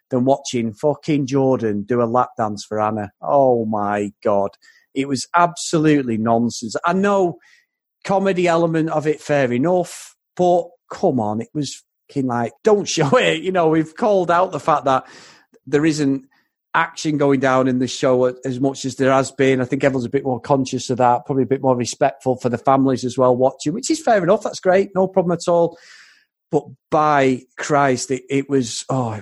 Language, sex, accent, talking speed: English, male, British, 195 wpm